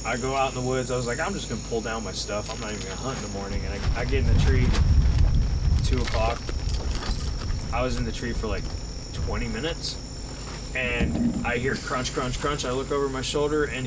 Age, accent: 20-39, American